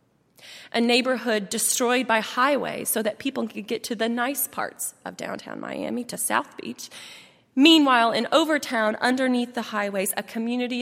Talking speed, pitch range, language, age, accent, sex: 155 wpm, 210-260 Hz, English, 30-49, American, female